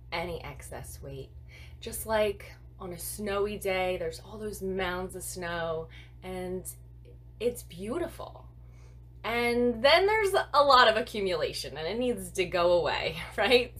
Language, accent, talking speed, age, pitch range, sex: English, American, 140 wpm, 20-39, 130-205 Hz, female